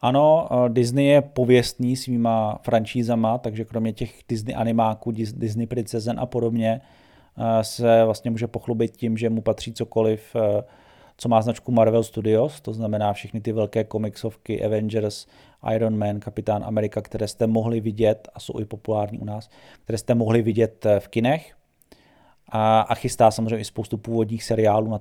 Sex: male